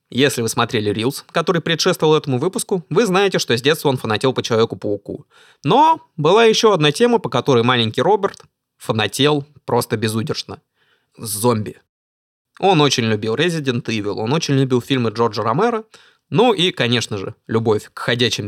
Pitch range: 115-170 Hz